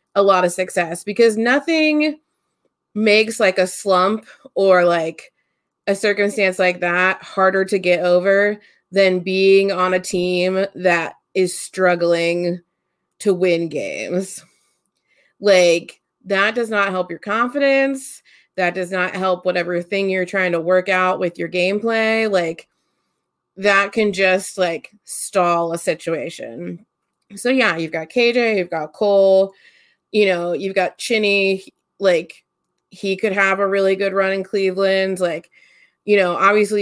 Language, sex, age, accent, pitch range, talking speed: English, female, 30-49, American, 175-205 Hz, 140 wpm